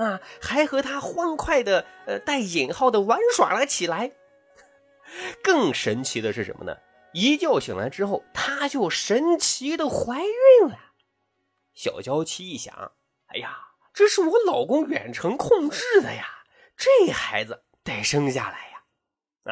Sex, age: male, 20-39